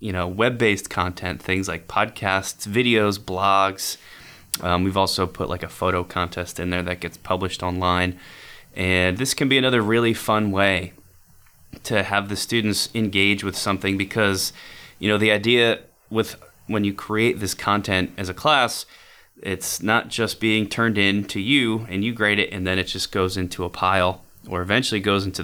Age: 20-39